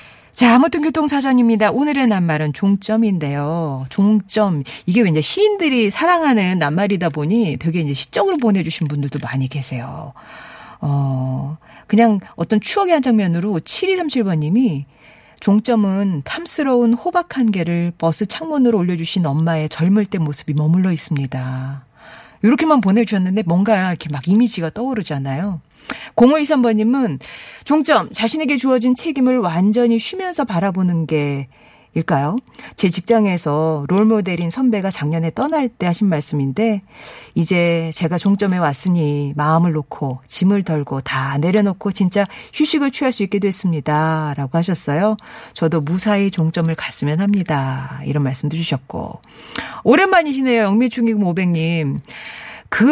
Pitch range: 155-225 Hz